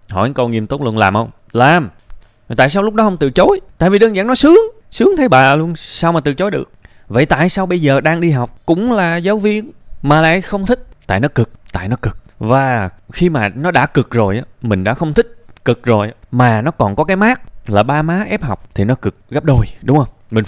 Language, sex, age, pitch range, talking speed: Vietnamese, male, 20-39, 110-170 Hz, 250 wpm